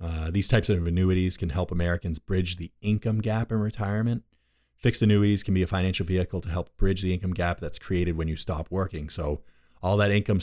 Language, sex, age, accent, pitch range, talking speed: English, male, 30-49, American, 85-100 Hz, 215 wpm